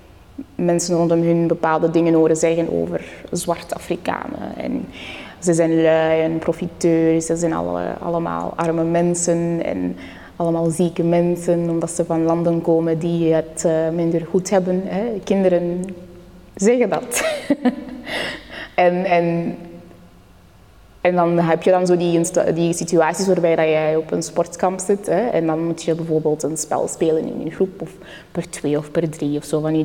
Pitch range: 160-180 Hz